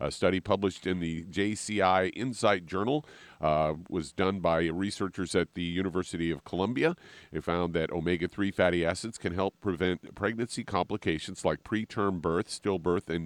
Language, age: English, 50-69